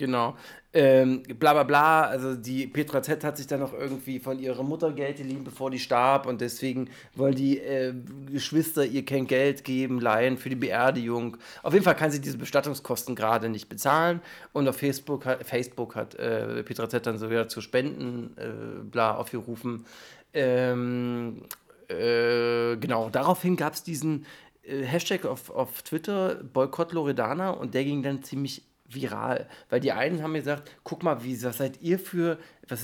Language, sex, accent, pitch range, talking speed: German, male, German, 125-155 Hz, 170 wpm